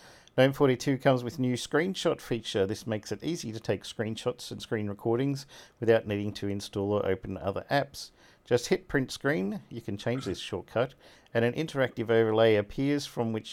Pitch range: 100-130 Hz